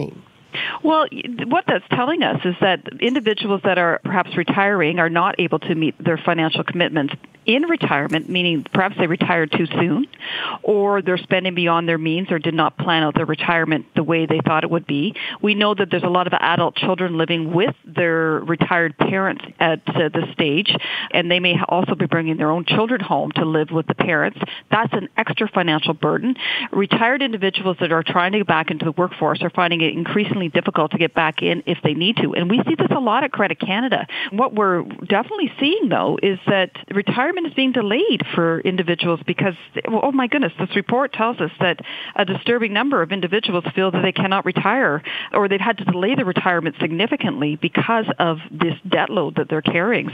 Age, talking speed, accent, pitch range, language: 40-59, 200 wpm, American, 165-205 Hz, English